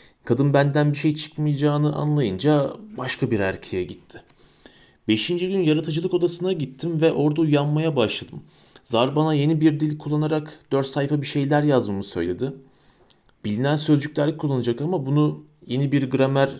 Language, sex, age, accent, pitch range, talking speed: Turkish, male, 40-59, native, 135-170 Hz, 140 wpm